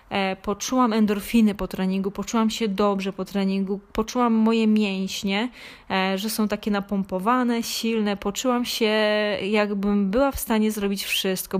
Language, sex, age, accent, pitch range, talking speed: Polish, female, 20-39, native, 195-225 Hz, 130 wpm